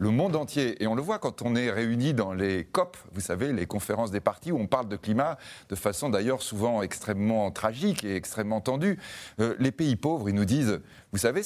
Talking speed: 220 wpm